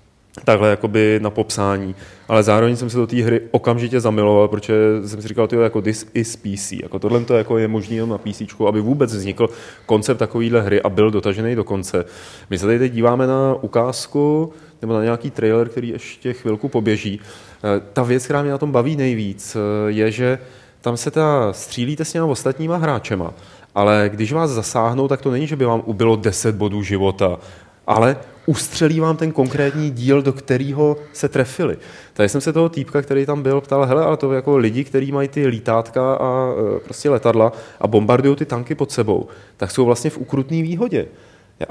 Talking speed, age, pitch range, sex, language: 195 wpm, 30-49, 110-140 Hz, male, Czech